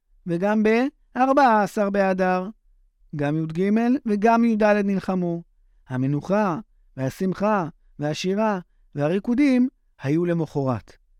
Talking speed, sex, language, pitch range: 75 wpm, male, Hebrew, 125-205 Hz